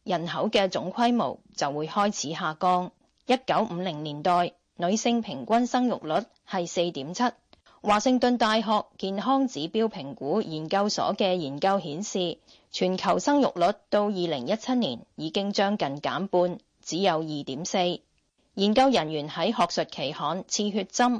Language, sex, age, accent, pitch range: Chinese, female, 20-39, native, 170-225 Hz